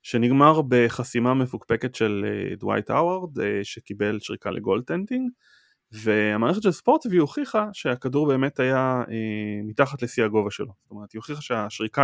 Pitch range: 110-135 Hz